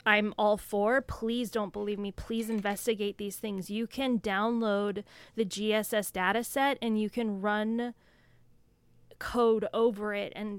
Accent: American